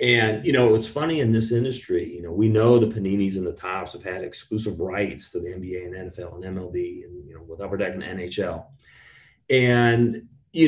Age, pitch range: 40-59, 105-155 Hz